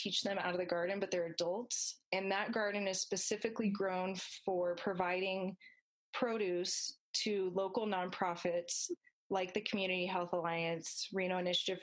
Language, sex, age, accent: English, female, 20-39, American